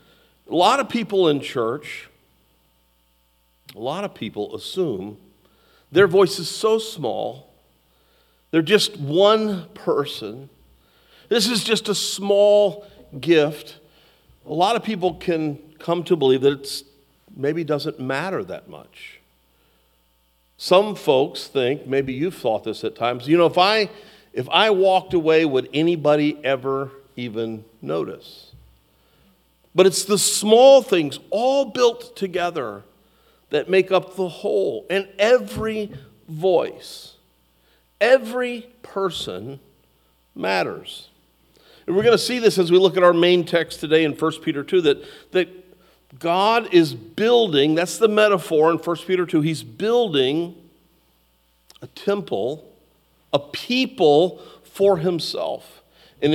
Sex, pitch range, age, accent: male, 135-200 Hz, 50-69, American